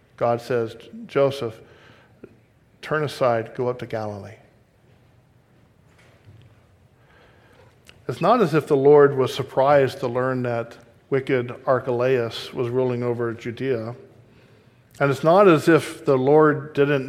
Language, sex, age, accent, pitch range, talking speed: English, male, 50-69, American, 125-160 Hz, 120 wpm